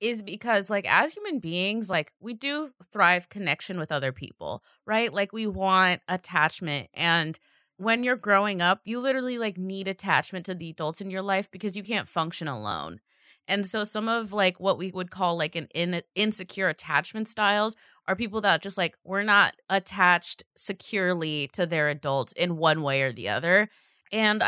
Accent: American